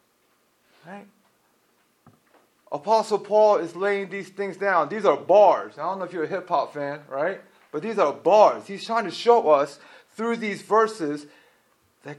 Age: 30-49